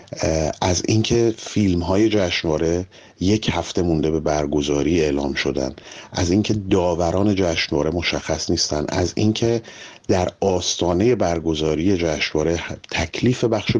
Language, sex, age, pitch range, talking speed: Persian, male, 30-49, 80-100 Hz, 110 wpm